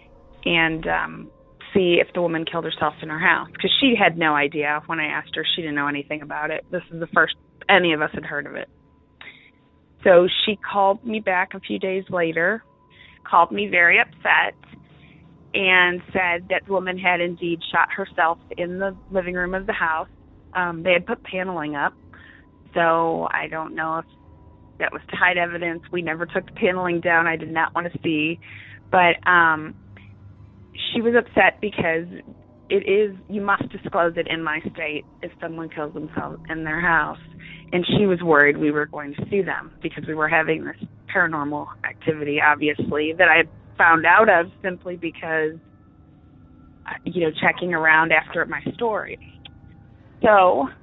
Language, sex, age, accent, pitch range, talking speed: English, female, 30-49, American, 150-185 Hz, 175 wpm